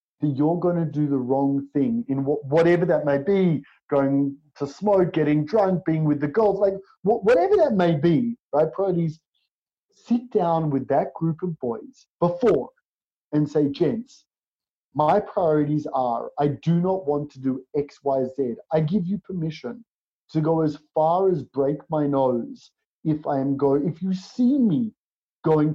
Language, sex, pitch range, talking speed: English, male, 140-195 Hz, 170 wpm